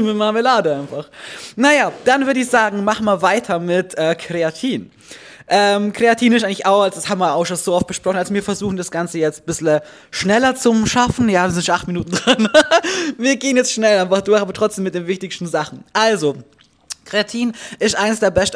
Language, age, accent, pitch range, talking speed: German, 20-39, German, 175-215 Hz, 205 wpm